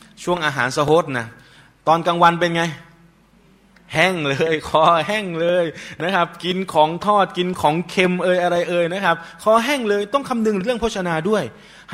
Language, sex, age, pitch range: Thai, male, 20-39, 135-180 Hz